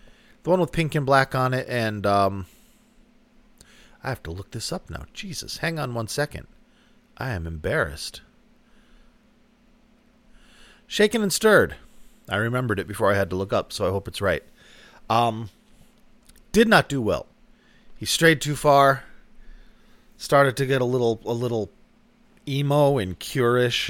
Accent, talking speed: American, 150 wpm